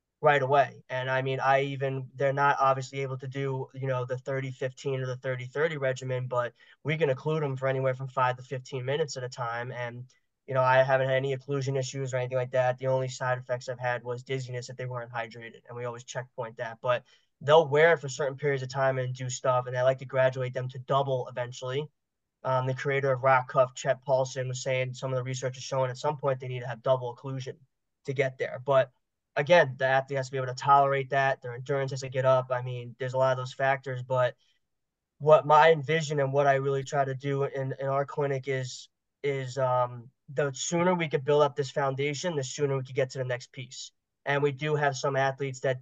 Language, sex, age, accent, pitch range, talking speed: English, male, 20-39, American, 130-140 Hz, 240 wpm